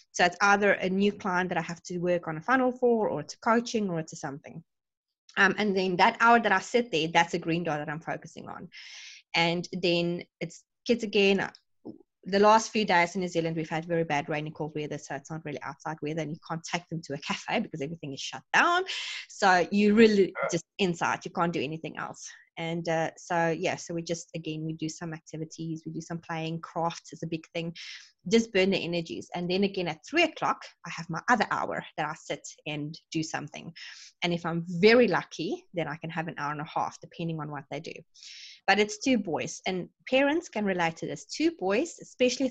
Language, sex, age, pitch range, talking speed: English, female, 20-39, 160-200 Hz, 225 wpm